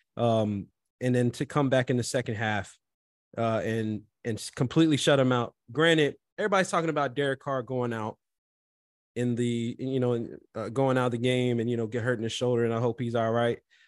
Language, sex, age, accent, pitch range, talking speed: English, male, 20-39, American, 115-135 Hz, 215 wpm